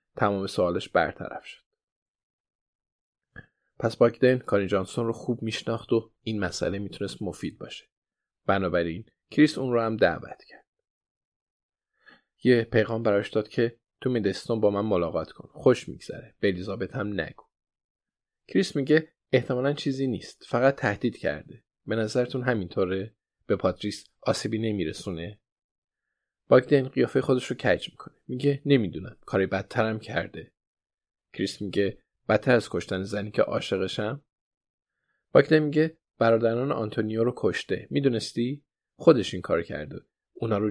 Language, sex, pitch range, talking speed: Persian, male, 100-130 Hz, 130 wpm